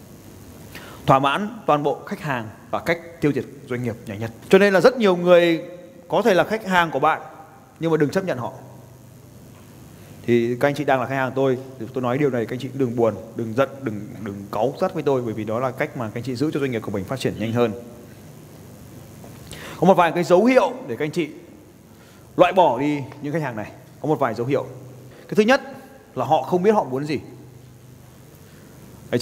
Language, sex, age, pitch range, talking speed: Vietnamese, male, 20-39, 120-160 Hz, 230 wpm